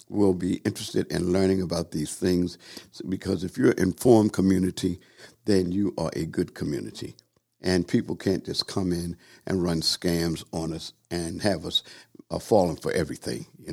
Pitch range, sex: 90-110 Hz, male